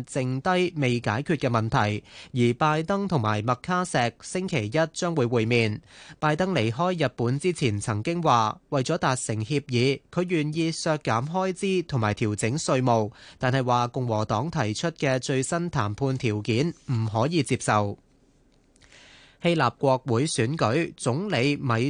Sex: male